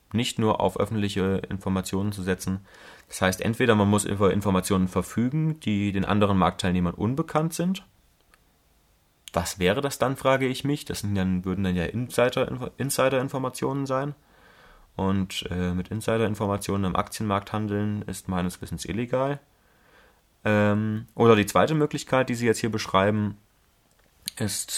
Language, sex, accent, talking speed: German, male, German, 135 wpm